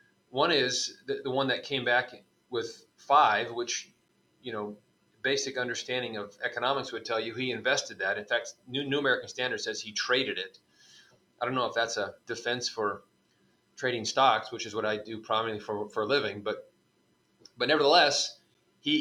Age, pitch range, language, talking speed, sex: 30-49, 110-160 Hz, English, 180 wpm, male